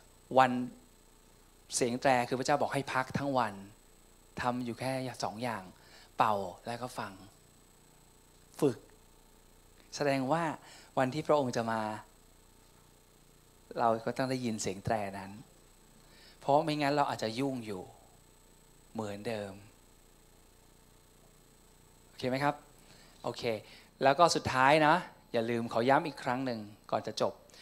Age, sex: 20-39, male